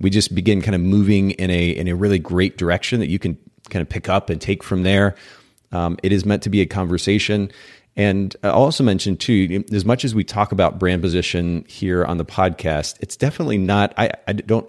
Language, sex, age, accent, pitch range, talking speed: English, male, 30-49, American, 85-100 Hz, 225 wpm